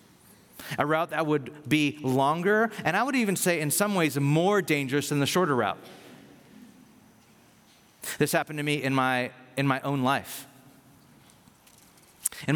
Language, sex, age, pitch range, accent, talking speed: English, male, 30-49, 120-150 Hz, American, 150 wpm